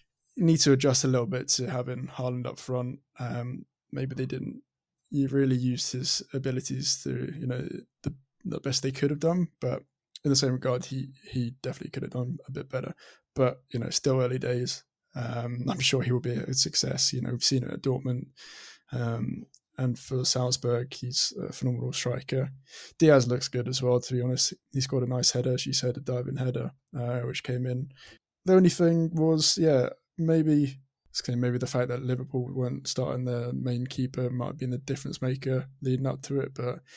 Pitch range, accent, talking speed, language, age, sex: 125-140 Hz, British, 200 wpm, English, 20-39, male